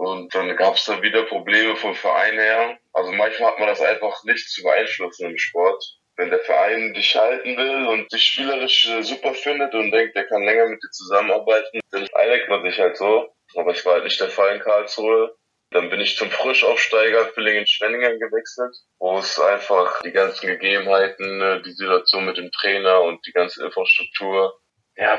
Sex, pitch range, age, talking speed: male, 95-120 Hz, 20-39, 190 wpm